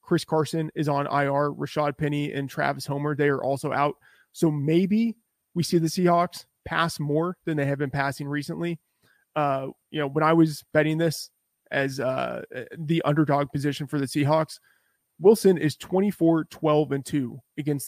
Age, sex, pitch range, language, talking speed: 30-49, male, 140-160 Hz, English, 165 wpm